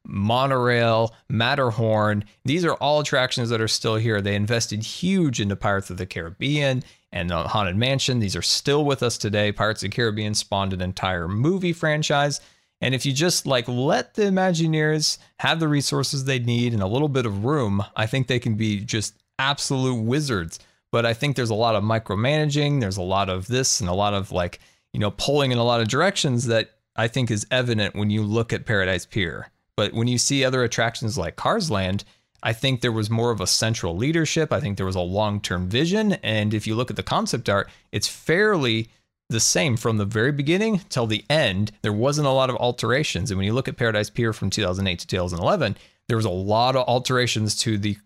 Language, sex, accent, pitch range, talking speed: English, male, American, 105-130 Hz, 210 wpm